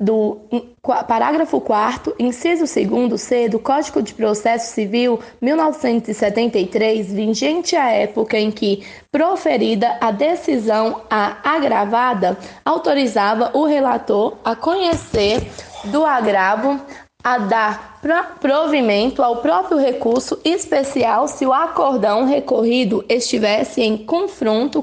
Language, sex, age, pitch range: Portuguese, female, 10-29, 220-315 Hz